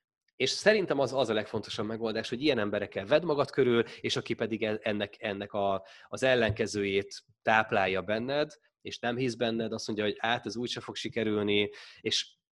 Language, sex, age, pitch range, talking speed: Hungarian, male, 20-39, 100-120 Hz, 170 wpm